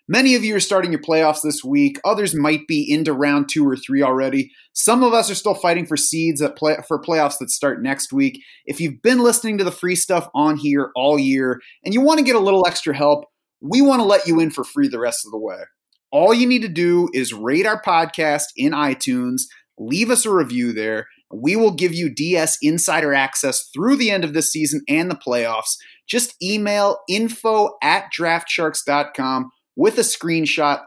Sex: male